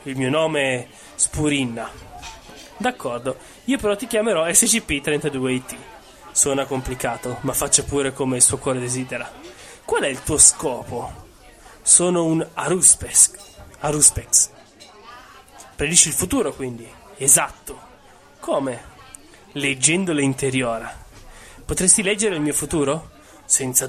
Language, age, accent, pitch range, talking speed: Italian, 20-39, native, 130-170 Hz, 110 wpm